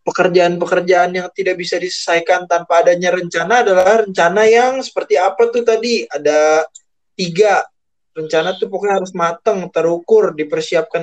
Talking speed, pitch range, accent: 130 wpm, 155-195 Hz, native